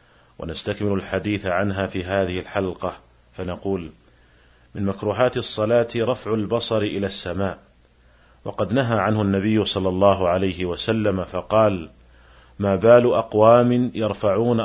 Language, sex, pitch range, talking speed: Arabic, male, 95-115 Hz, 110 wpm